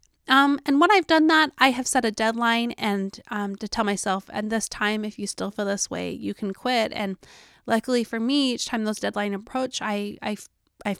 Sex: female